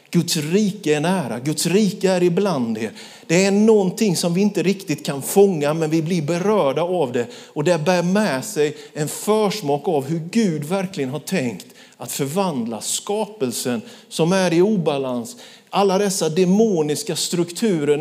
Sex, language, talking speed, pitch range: male, Swedish, 160 wpm, 175-225 Hz